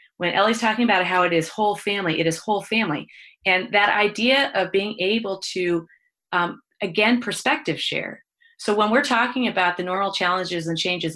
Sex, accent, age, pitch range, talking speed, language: female, American, 30-49, 170-225 Hz, 185 wpm, English